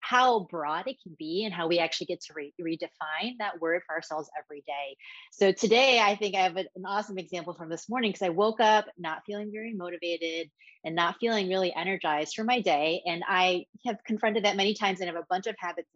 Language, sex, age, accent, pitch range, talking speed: English, female, 30-49, American, 170-225 Hz, 220 wpm